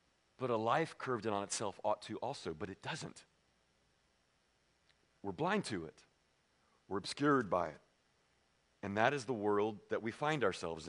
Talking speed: 165 wpm